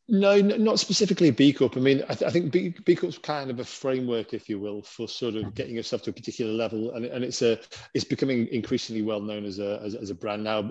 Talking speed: 250 wpm